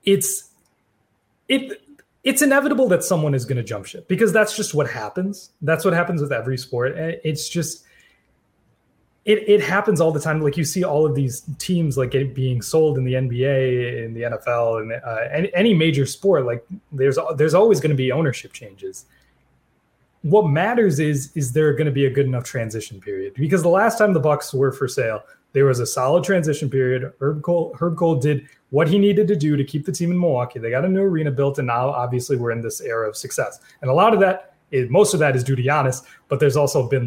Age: 20-39